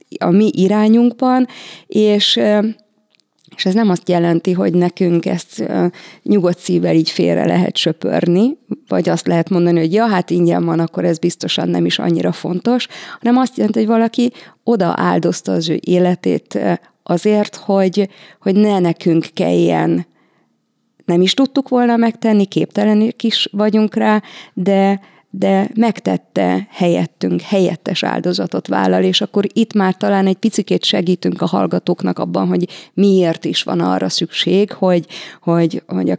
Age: 30-49